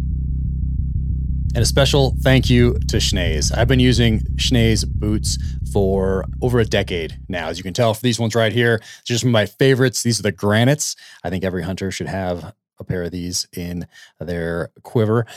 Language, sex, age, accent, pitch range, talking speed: English, male, 30-49, American, 90-115 Hz, 185 wpm